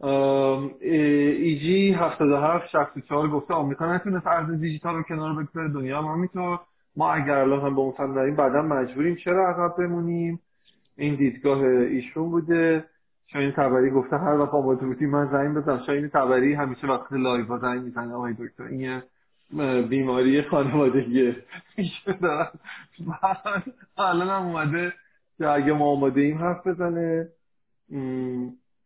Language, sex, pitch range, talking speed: Persian, male, 135-175 Hz, 150 wpm